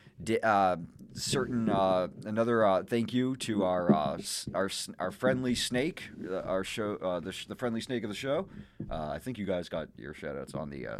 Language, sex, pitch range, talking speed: English, male, 85-115 Hz, 220 wpm